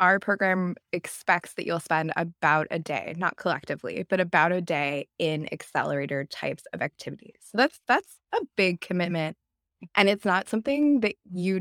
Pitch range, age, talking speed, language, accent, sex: 160-190 Hz, 20-39, 165 wpm, English, American, female